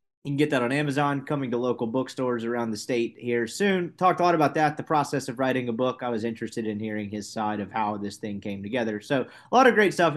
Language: English